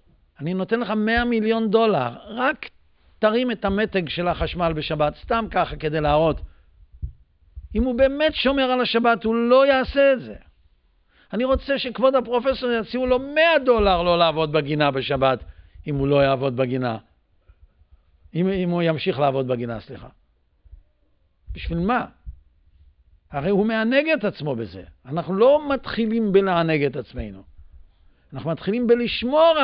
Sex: male